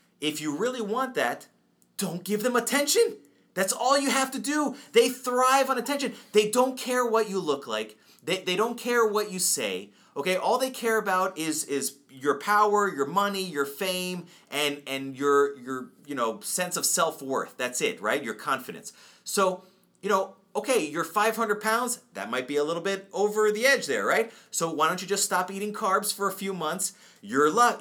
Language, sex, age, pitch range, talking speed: English, male, 30-49, 150-220 Hz, 205 wpm